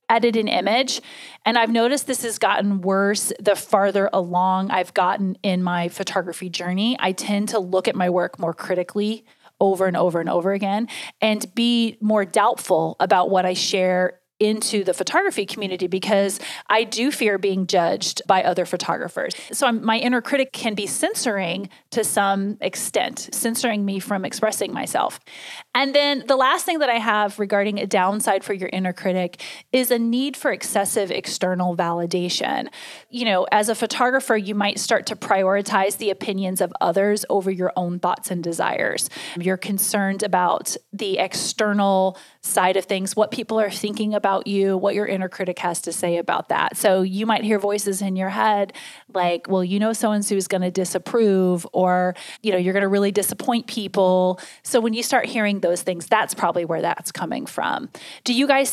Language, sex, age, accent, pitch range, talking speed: English, female, 30-49, American, 185-230 Hz, 180 wpm